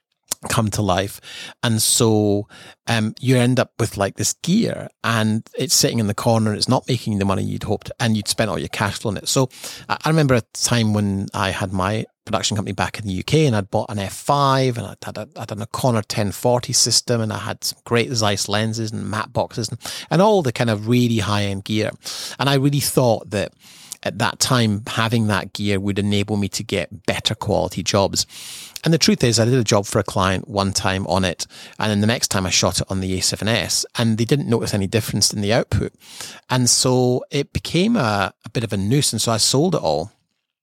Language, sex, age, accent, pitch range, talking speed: English, male, 30-49, British, 100-120 Hz, 230 wpm